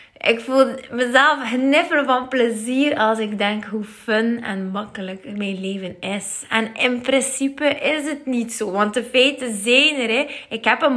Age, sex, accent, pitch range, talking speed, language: 20-39, female, Dutch, 190-245 Hz, 170 wpm, Dutch